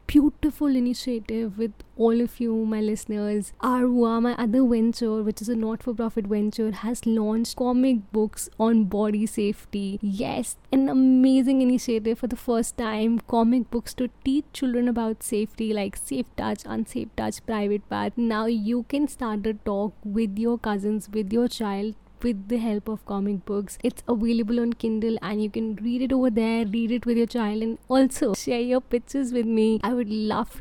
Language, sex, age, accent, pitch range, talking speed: English, female, 20-39, Indian, 210-245 Hz, 175 wpm